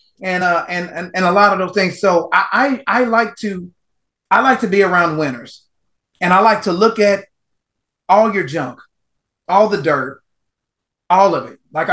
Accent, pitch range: American, 150-195 Hz